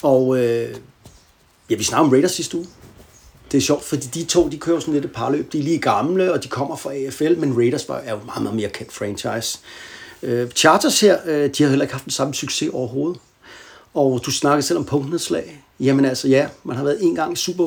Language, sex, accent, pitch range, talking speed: Danish, male, native, 125-150 Hz, 230 wpm